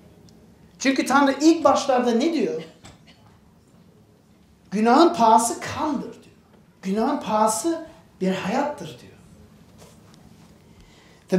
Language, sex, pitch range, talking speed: Turkish, male, 205-275 Hz, 85 wpm